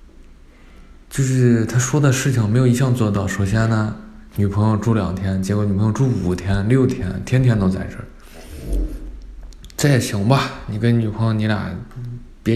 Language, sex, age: Chinese, male, 20-39